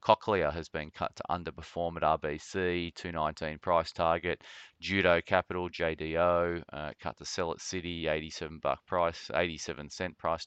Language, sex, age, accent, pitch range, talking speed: English, male, 20-39, Australian, 80-90 Hz, 150 wpm